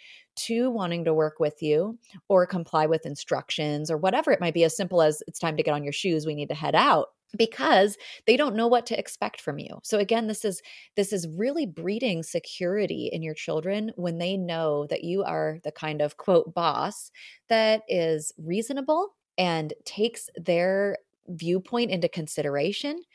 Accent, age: American, 30-49